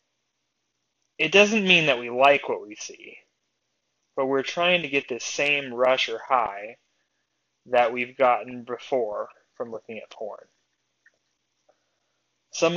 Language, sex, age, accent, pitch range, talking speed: English, male, 20-39, American, 115-140 Hz, 130 wpm